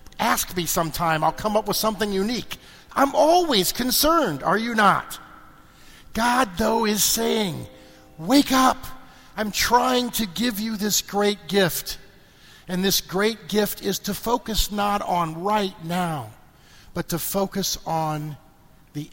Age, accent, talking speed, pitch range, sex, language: 50-69, American, 140 wpm, 170-235 Hz, male, English